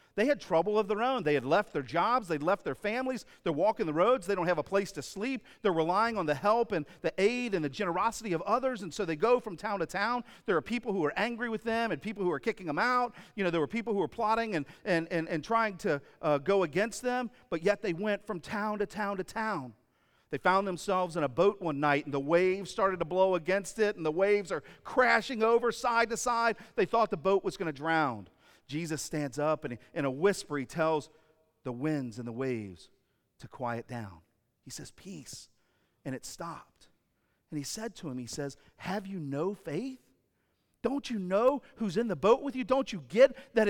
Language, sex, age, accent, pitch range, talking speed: English, male, 40-59, American, 160-230 Hz, 235 wpm